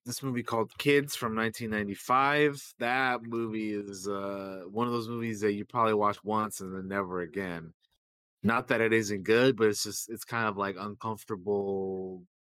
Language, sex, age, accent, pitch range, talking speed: English, male, 30-49, American, 95-115 Hz, 185 wpm